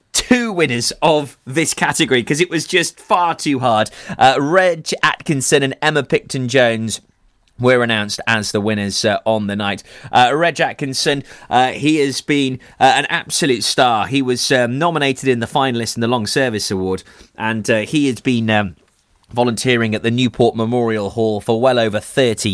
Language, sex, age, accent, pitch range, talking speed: English, male, 30-49, British, 105-135 Hz, 175 wpm